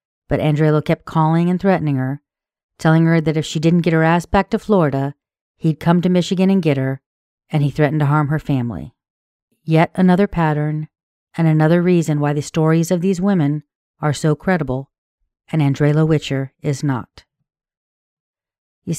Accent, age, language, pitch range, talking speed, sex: American, 40-59, English, 145-170 Hz, 170 wpm, female